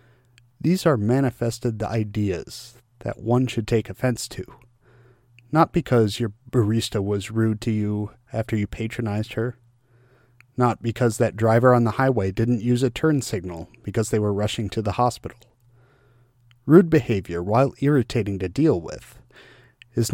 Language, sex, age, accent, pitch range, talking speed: English, male, 40-59, American, 110-130 Hz, 150 wpm